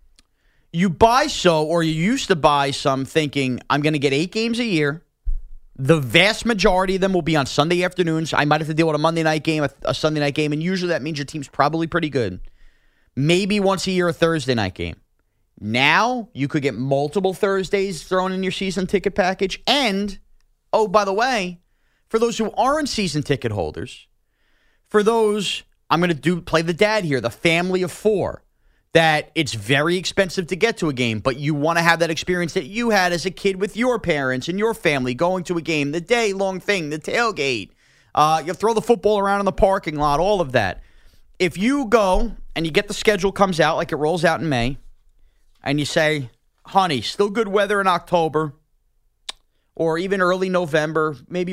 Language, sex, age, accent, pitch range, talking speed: English, male, 30-49, American, 150-195 Hz, 205 wpm